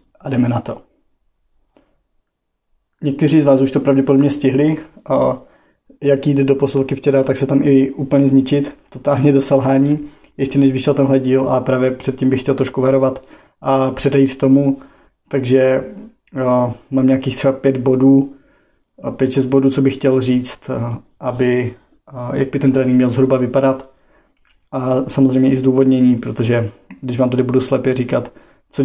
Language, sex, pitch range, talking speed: Czech, male, 130-135 Hz, 150 wpm